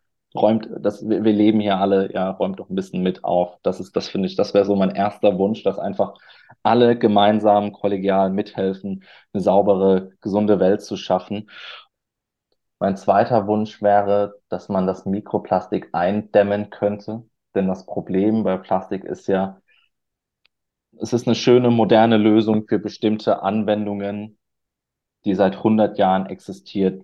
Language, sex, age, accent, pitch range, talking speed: German, male, 20-39, German, 100-115 Hz, 145 wpm